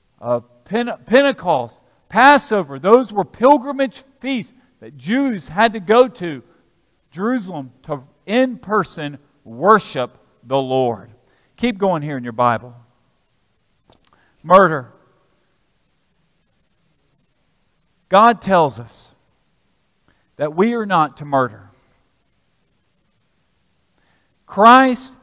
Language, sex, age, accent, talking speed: English, male, 50-69, American, 90 wpm